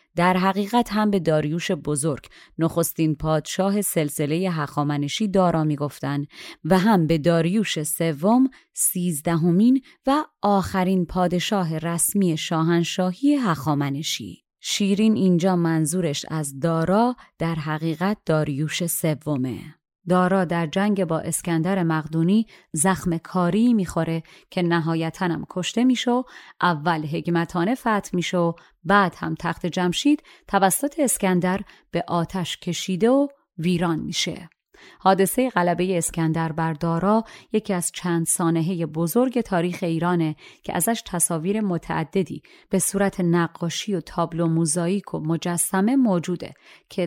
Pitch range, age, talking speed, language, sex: 160-195 Hz, 30-49, 110 wpm, Persian, female